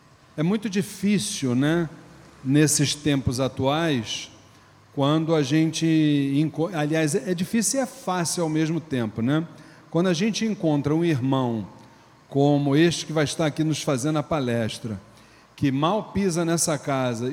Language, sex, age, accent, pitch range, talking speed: Portuguese, male, 40-59, Brazilian, 135-165 Hz, 140 wpm